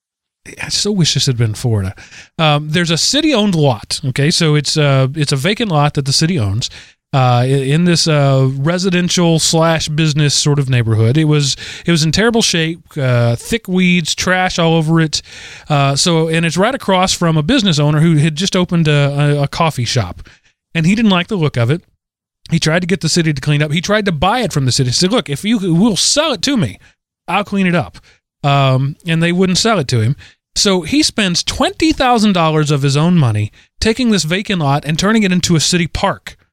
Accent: American